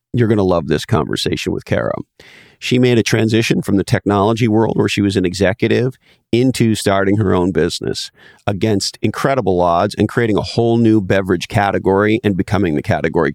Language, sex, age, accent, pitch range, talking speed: English, male, 40-59, American, 95-115 Hz, 180 wpm